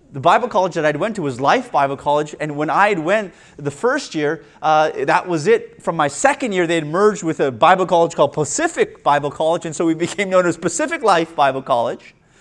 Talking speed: 230 wpm